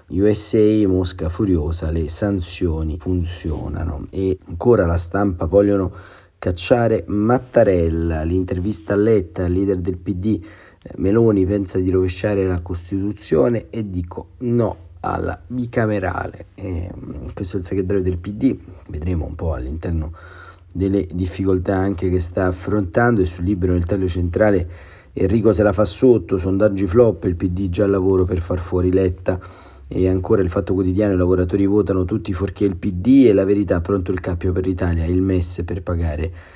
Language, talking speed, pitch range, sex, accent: Italian, 155 wpm, 90-105 Hz, male, native